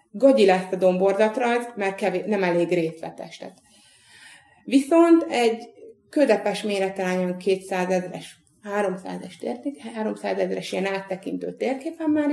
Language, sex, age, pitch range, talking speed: Hungarian, female, 30-49, 175-235 Hz, 95 wpm